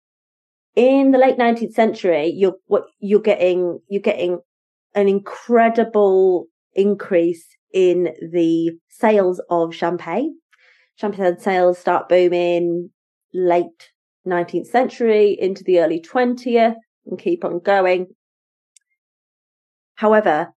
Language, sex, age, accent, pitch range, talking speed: English, female, 30-49, British, 175-225 Hz, 100 wpm